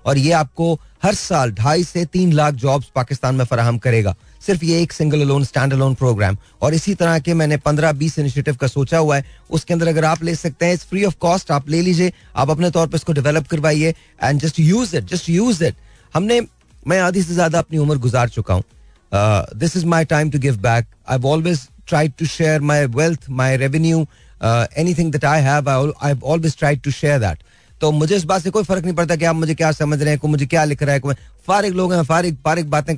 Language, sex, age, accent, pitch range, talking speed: Hindi, male, 30-49, native, 140-175 Hz, 200 wpm